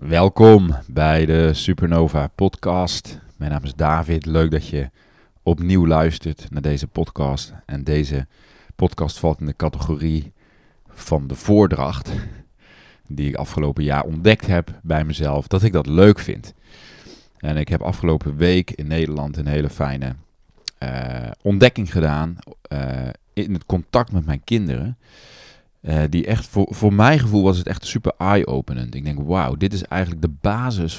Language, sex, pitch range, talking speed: Dutch, male, 75-95 Hz, 155 wpm